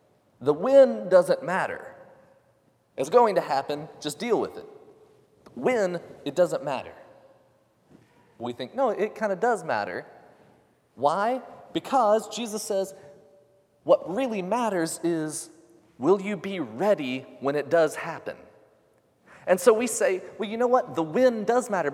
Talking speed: 140 wpm